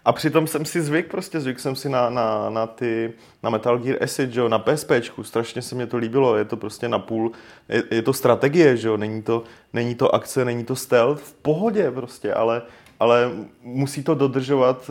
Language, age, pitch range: Czech, 20-39, 110-130 Hz